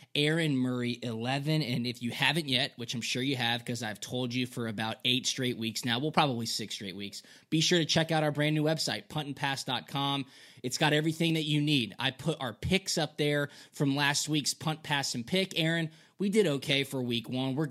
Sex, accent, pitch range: male, American, 125-150 Hz